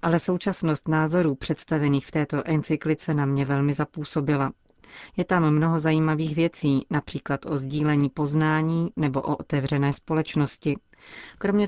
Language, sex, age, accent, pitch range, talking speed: Czech, female, 30-49, native, 145-165 Hz, 130 wpm